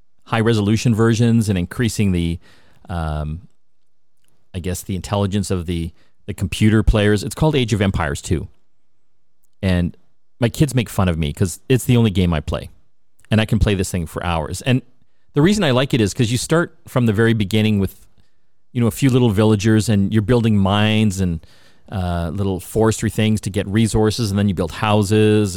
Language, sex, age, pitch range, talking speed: English, male, 40-59, 95-115 Hz, 190 wpm